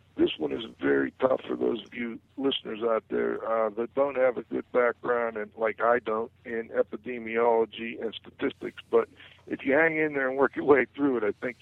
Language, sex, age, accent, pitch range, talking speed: English, male, 60-79, American, 110-145 Hz, 205 wpm